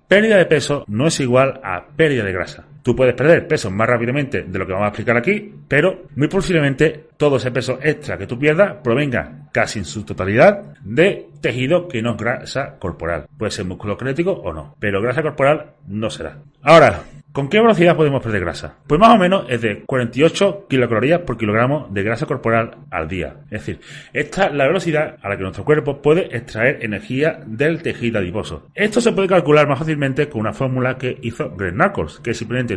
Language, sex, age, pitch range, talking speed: Spanish, male, 30-49, 115-170 Hz, 205 wpm